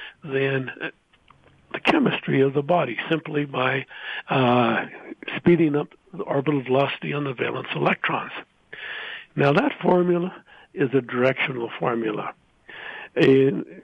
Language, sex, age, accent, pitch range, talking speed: English, male, 60-79, American, 130-160 Hz, 115 wpm